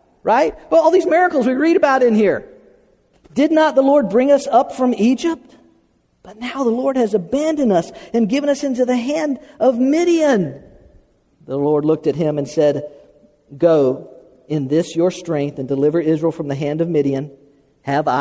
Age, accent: 50-69, American